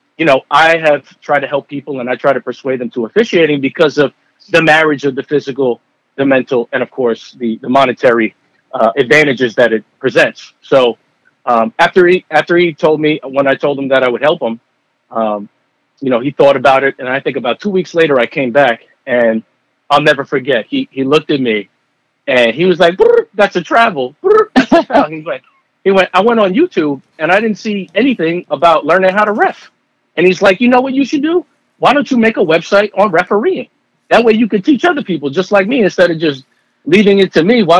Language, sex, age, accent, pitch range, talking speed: English, male, 40-59, American, 130-190 Hz, 215 wpm